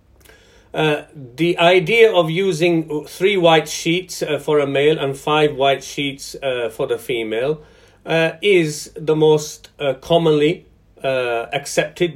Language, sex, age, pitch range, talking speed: English, male, 40-59, 135-175 Hz, 140 wpm